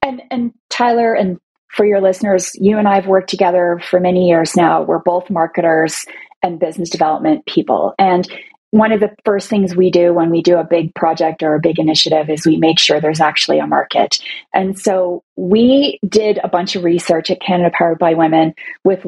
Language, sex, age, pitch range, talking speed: English, female, 30-49, 170-225 Hz, 200 wpm